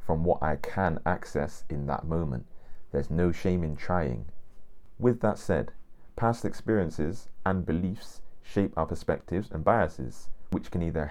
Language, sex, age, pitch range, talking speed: English, male, 30-49, 70-90 Hz, 150 wpm